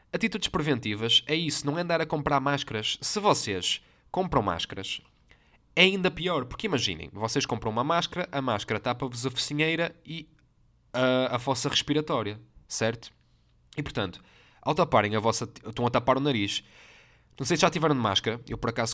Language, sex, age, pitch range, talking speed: Portuguese, male, 20-39, 110-150 Hz, 175 wpm